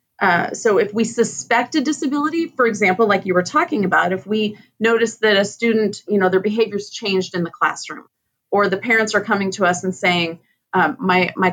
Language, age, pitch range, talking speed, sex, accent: English, 30-49, 175-220 Hz, 210 wpm, female, American